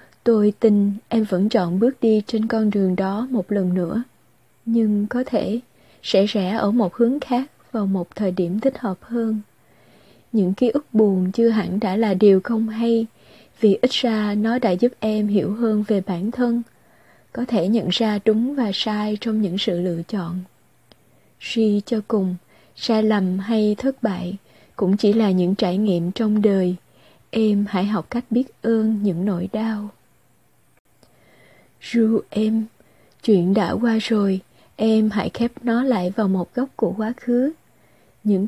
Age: 20-39